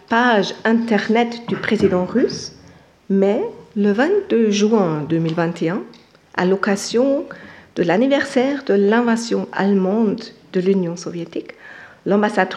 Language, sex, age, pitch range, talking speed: French, female, 50-69, 190-250 Hz, 100 wpm